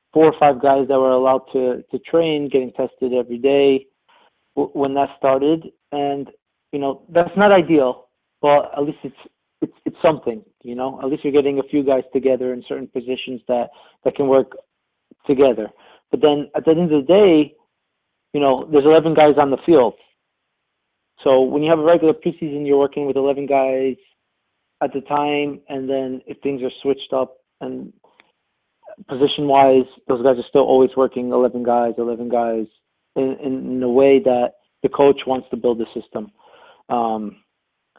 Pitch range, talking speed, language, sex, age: 130-145 Hz, 175 wpm, English, male, 30-49